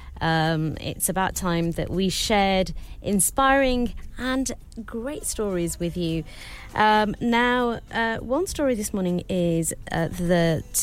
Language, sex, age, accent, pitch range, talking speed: English, female, 30-49, British, 155-205 Hz, 125 wpm